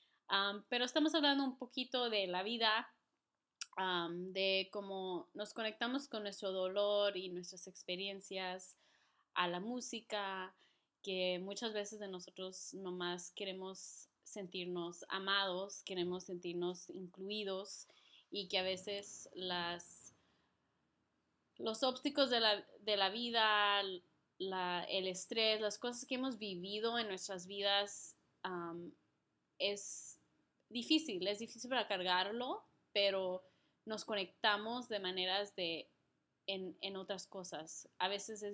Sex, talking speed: female, 125 wpm